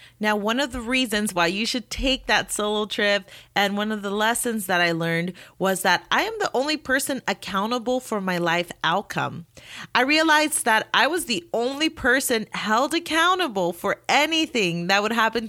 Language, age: English, 30-49